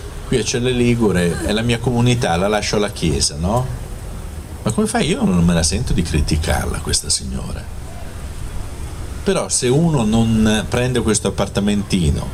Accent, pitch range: native, 85-110 Hz